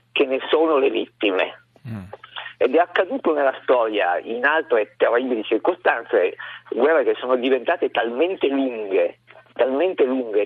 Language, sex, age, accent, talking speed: Italian, male, 50-69, native, 125 wpm